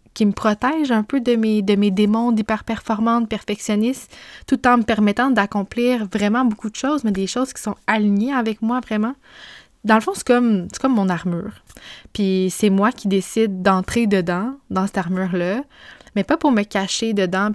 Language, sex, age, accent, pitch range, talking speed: French, female, 20-39, Canadian, 190-230 Hz, 190 wpm